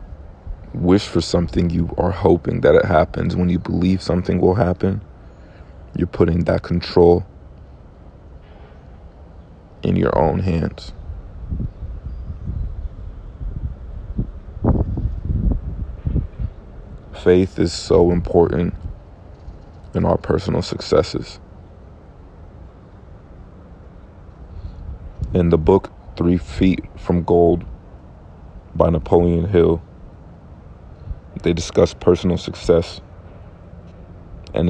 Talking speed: 80 wpm